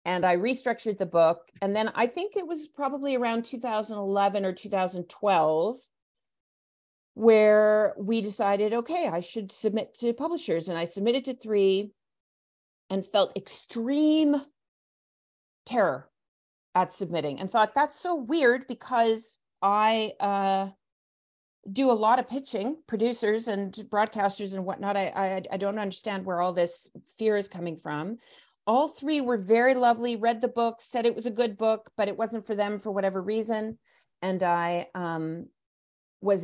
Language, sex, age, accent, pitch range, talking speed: English, female, 40-59, American, 170-230 Hz, 150 wpm